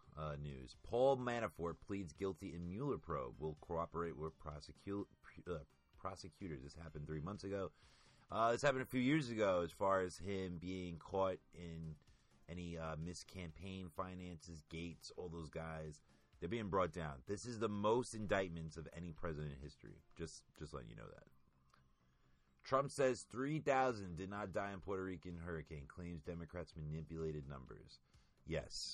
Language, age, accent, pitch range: English, 30-49, American, 75-100 Hz